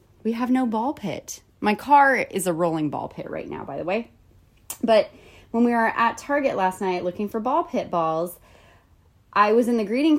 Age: 20-39